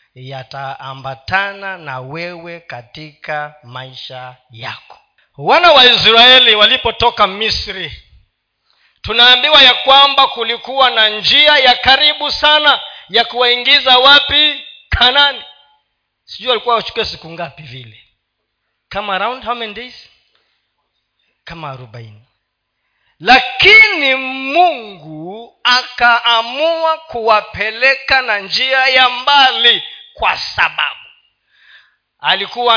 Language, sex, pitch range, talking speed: Swahili, male, 170-260 Hz, 85 wpm